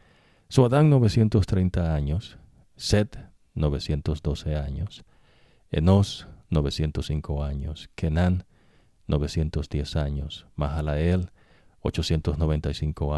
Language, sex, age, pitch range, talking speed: English, male, 50-69, 75-95 Hz, 65 wpm